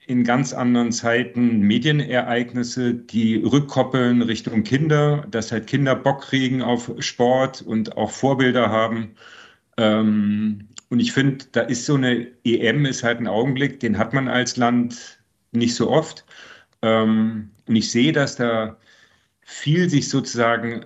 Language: German